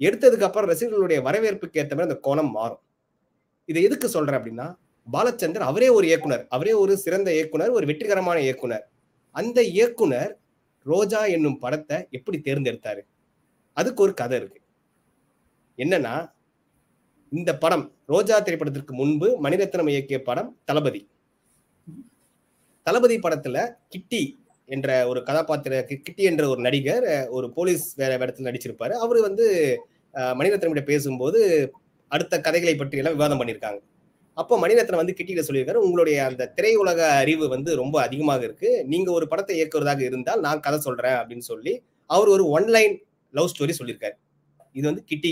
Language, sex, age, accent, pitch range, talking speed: Tamil, male, 30-49, native, 140-225 Hz, 135 wpm